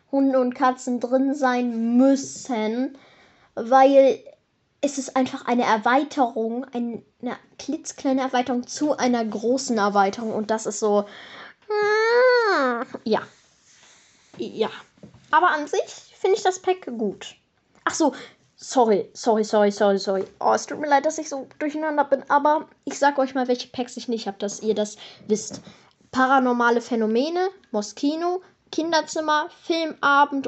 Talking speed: 135 wpm